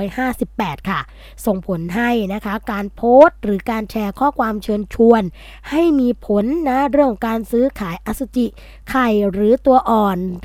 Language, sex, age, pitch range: Thai, female, 20-39, 195-245 Hz